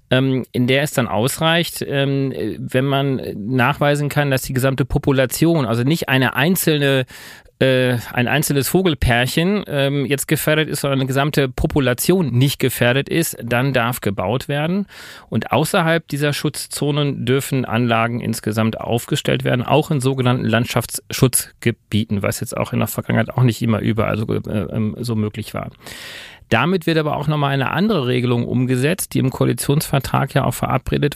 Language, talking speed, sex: German, 145 wpm, male